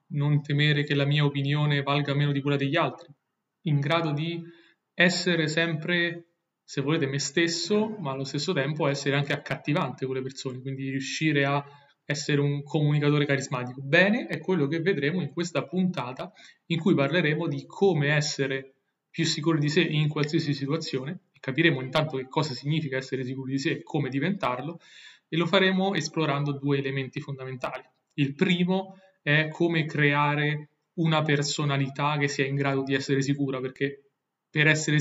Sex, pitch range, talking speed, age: male, 140-165 Hz, 165 wpm, 30-49